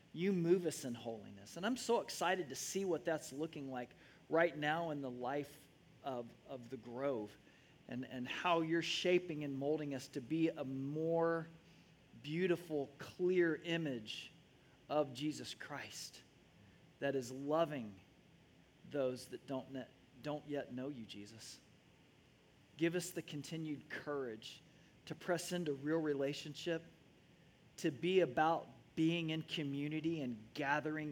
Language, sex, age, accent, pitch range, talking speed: English, male, 40-59, American, 130-160 Hz, 140 wpm